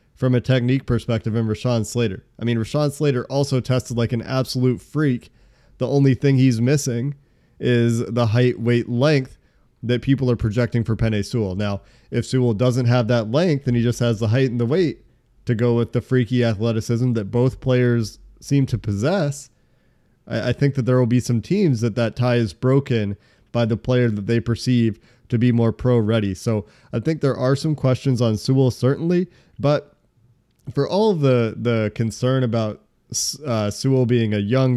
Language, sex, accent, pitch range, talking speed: English, male, American, 115-130 Hz, 185 wpm